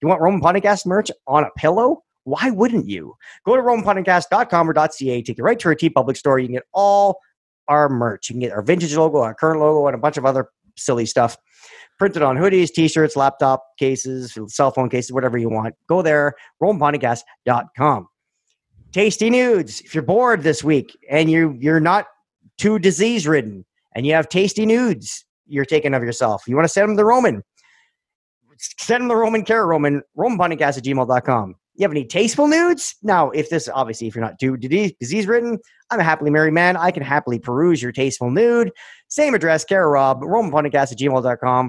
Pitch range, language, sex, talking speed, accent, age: 130-200 Hz, English, male, 185 wpm, American, 40-59